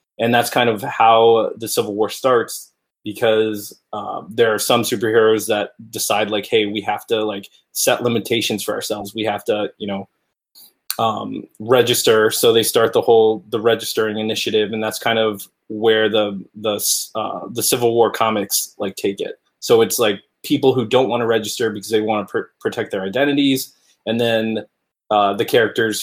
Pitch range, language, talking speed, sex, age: 105-120 Hz, English, 180 wpm, male, 20-39